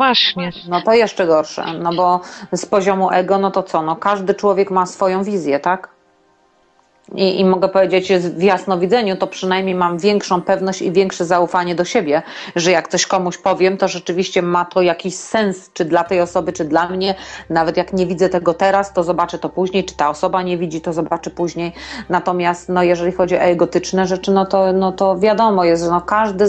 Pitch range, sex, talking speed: 175-195 Hz, female, 190 wpm